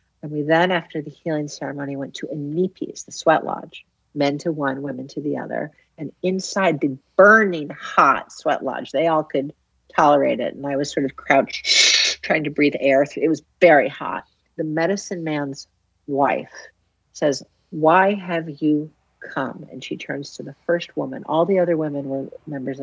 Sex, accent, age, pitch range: female, American, 50-69, 140-170 Hz